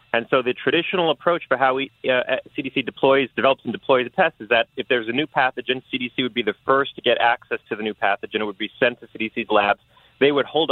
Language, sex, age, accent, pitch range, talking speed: English, male, 30-49, American, 110-140 Hz, 245 wpm